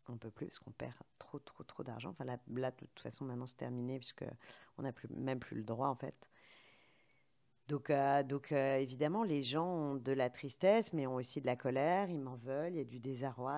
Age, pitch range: 40-59, 125-145 Hz